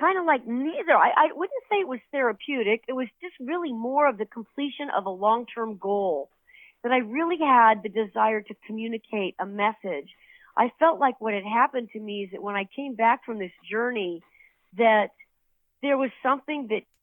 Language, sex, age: English, female, 40-59